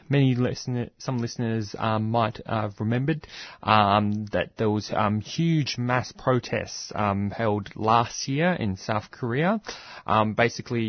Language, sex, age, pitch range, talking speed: English, male, 20-39, 105-120 Hz, 140 wpm